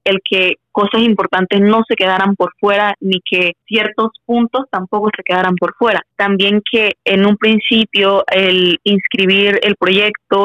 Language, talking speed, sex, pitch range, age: Spanish, 155 wpm, female, 190-215 Hz, 20-39